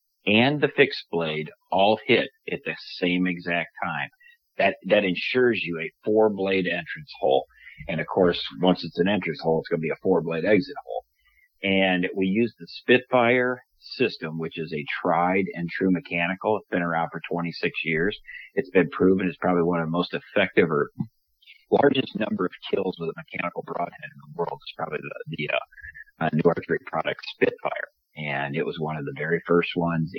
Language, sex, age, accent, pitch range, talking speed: English, male, 40-59, American, 80-100 Hz, 190 wpm